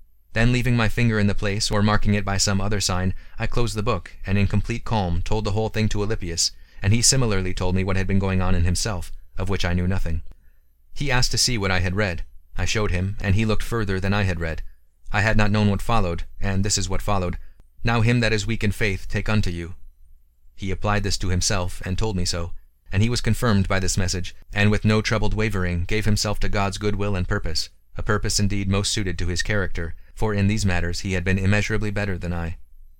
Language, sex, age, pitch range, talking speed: English, male, 30-49, 90-110 Hz, 240 wpm